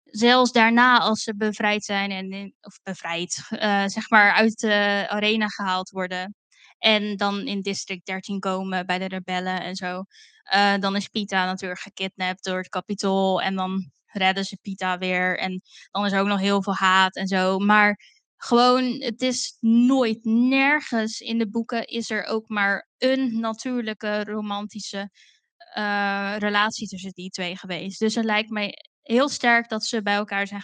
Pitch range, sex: 195-230 Hz, female